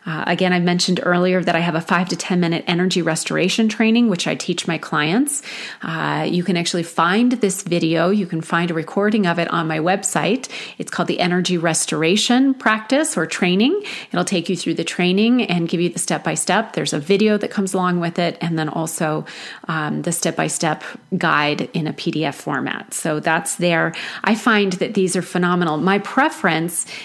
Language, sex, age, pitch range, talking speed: English, female, 30-49, 170-200 Hz, 195 wpm